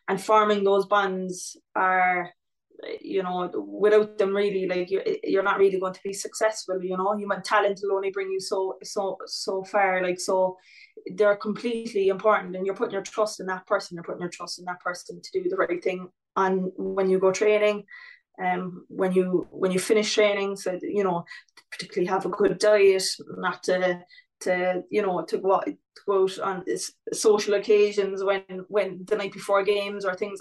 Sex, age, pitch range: female, 20-39, 185-210 Hz